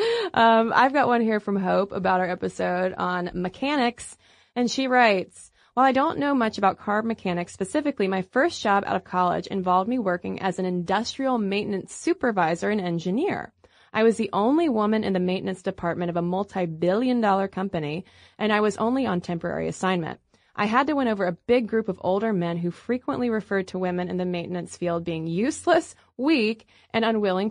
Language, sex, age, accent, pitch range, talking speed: English, female, 20-39, American, 180-240 Hz, 190 wpm